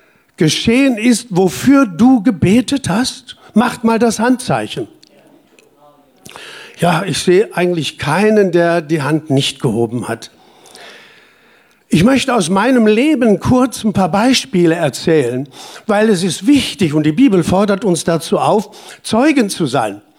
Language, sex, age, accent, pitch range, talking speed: German, male, 60-79, German, 170-245 Hz, 135 wpm